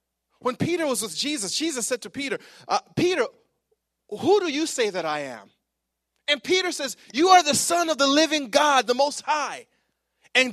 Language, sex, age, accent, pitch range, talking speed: English, male, 30-49, American, 185-270 Hz, 190 wpm